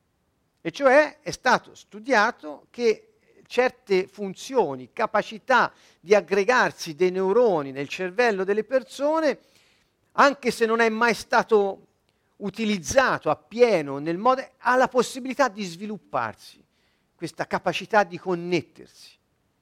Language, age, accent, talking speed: Italian, 50-69, native, 110 wpm